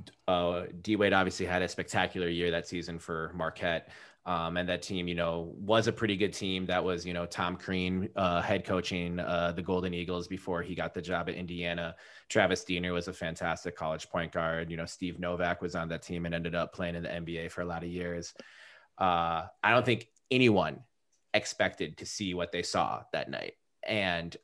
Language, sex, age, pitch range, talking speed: English, male, 20-39, 85-100 Hz, 210 wpm